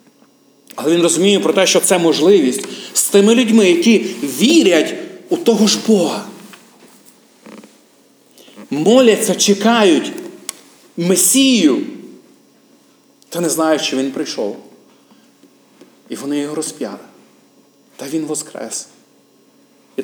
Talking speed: 100 wpm